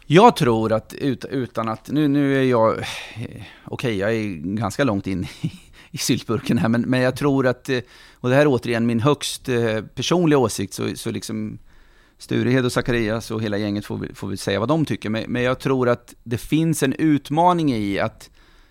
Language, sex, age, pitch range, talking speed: English, male, 30-49, 105-130 Hz, 185 wpm